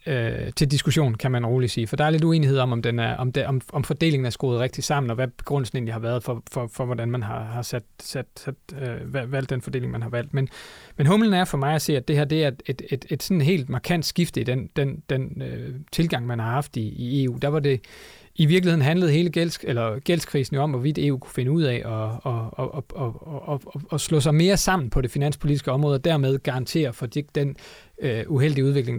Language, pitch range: Danish, 125-155 Hz